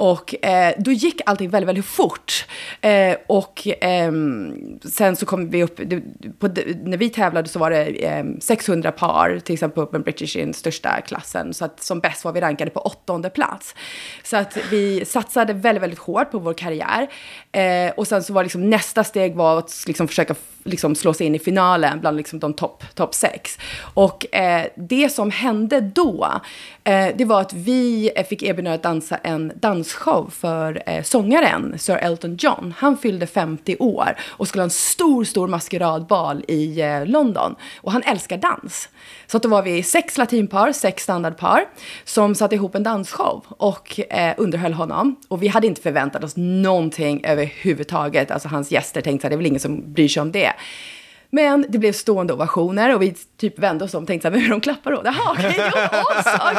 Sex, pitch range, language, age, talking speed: female, 170-230 Hz, Swedish, 30-49, 190 wpm